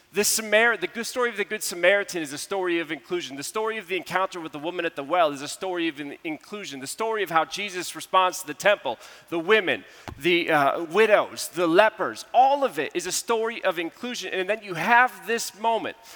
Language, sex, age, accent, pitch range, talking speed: English, male, 30-49, American, 160-205 Hz, 215 wpm